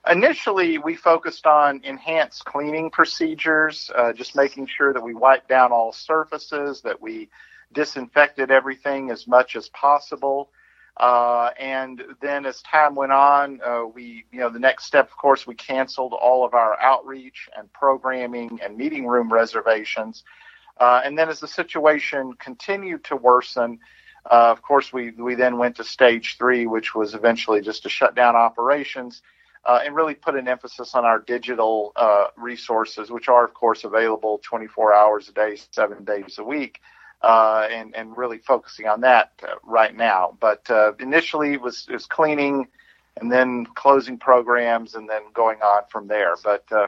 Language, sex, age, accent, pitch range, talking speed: English, male, 50-69, American, 115-140 Hz, 170 wpm